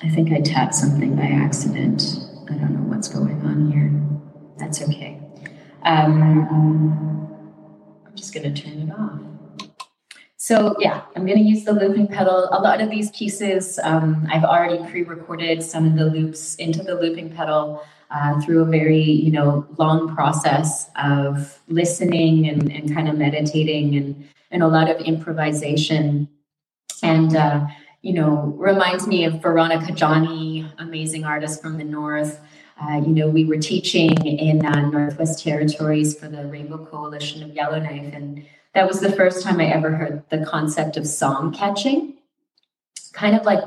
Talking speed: 160 wpm